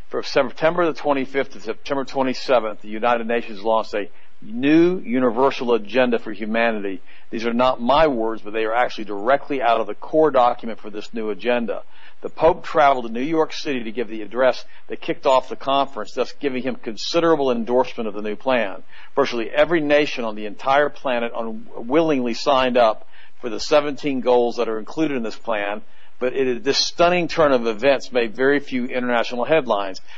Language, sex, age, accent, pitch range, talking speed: English, male, 50-69, American, 115-145 Hz, 185 wpm